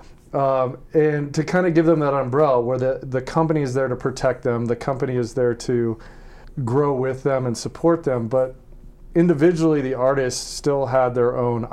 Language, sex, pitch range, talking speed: English, male, 120-140 Hz, 190 wpm